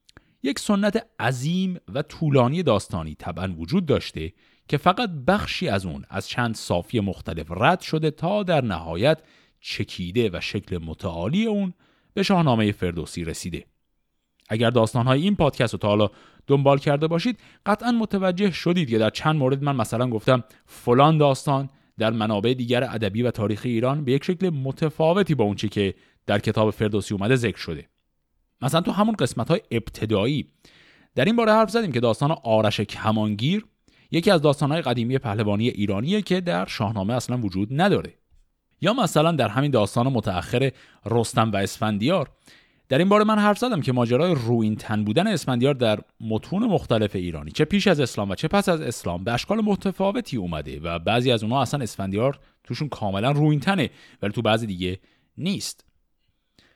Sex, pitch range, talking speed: male, 105-160 Hz, 160 wpm